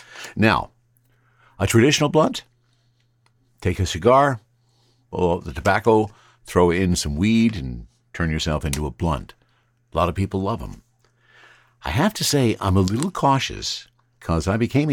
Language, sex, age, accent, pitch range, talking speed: English, male, 60-79, American, 80-120 Hz, 155 wpm